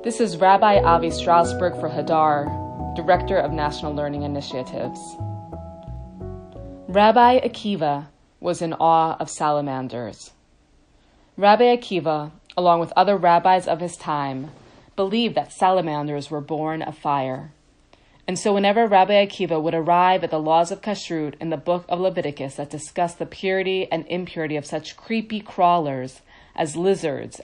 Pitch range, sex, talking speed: 145-190 Hz, female, 140 wpm